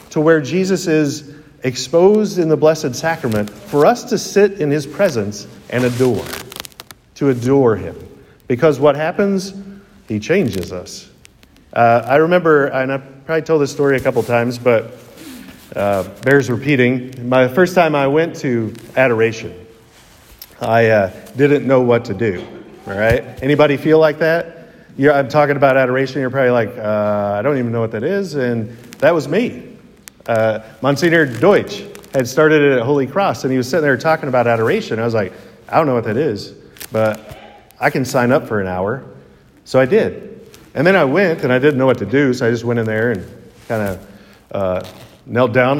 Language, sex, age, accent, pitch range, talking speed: English, male, 50-69, American, 115-155 Hz, 185 wpm